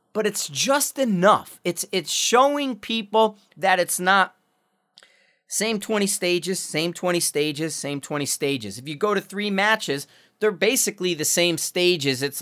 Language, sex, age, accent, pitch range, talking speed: English, male, 30-49, American, 150-200 Hz, 155 wpm